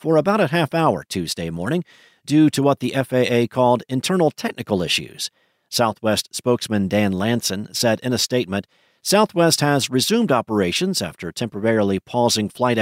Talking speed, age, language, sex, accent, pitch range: 145 wpm, 50-69, English, male, American, 105-140 Hz